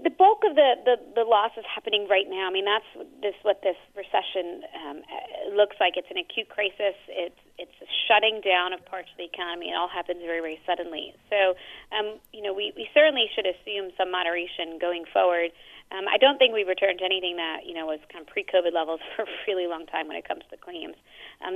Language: English